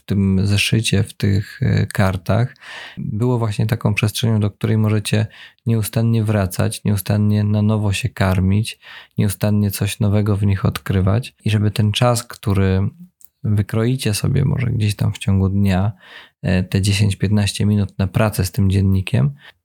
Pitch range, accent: 100-115 Hz, native